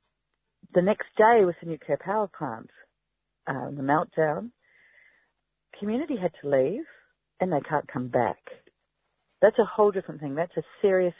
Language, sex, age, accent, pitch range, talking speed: English, female, 40-59, Australian, 145-185 Hz, 150 wpm